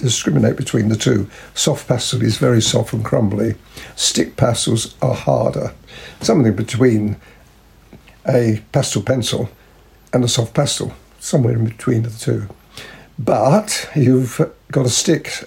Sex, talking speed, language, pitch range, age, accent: male, 130 wpm, English, 115-140 Hz, 60-79, British